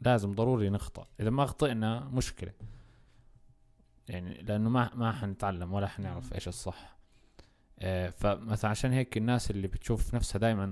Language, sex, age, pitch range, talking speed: Arabic, male, 20-39, 95-115 Hz, 135 wpm